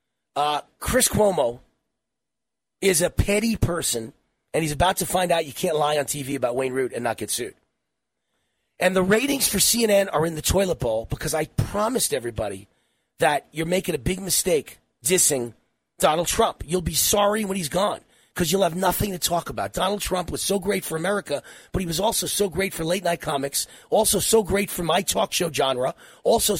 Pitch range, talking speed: 155-205 Hz, 195 wpm